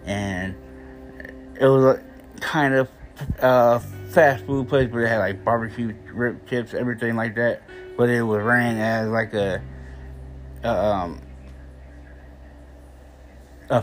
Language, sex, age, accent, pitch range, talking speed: English, male, 20-39, American, 95-120 Hz, 135 wpm